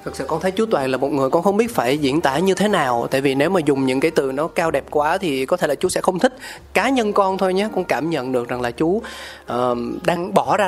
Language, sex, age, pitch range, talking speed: Vietnamese, male, 20-39, 130-180 Hz, 305 wpm